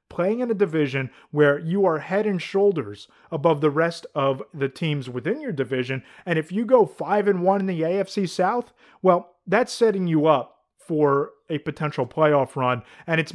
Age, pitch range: 30-49, 145-195 Hz